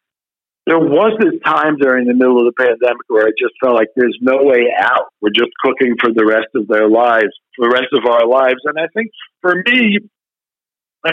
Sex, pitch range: male, 105-130 Hz